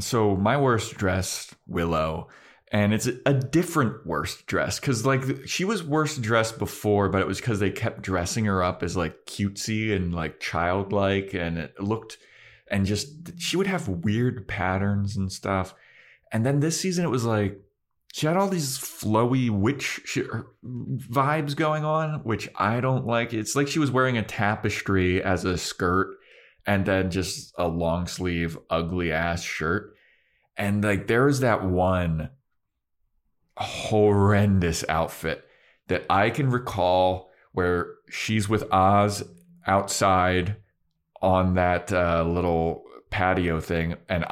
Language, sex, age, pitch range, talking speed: English, male, 20-39, 90-115 Hz, 145 wpm